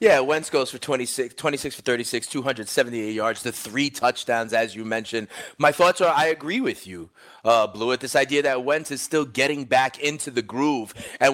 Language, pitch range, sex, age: English, 110-140 Hz, male, 30-49